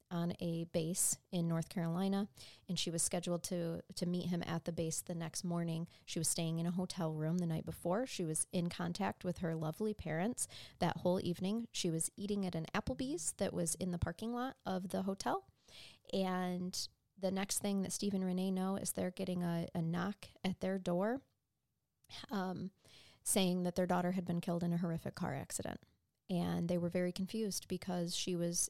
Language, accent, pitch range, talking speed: English, American, 165-190 Hz, 200 wpm